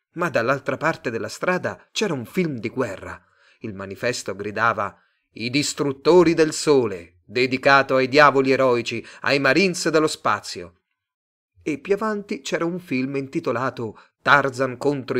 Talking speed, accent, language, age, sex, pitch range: 135 wpm, native, Italian, 30-49, male, 115-160 Hz